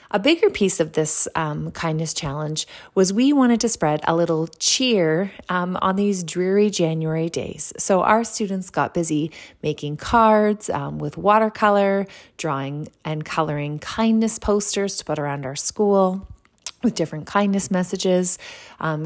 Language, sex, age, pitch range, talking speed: English, female, 30-49, 155-200 Hz, 150 wpm